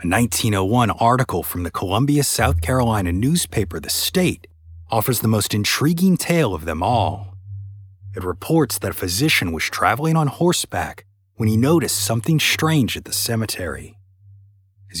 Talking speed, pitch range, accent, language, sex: 150 wpm, 90-125 Hz, American, English, male